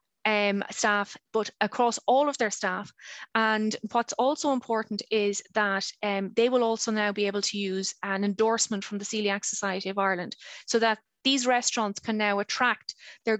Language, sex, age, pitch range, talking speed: English, female, 20-39, 195-225 Hz, 170 wpm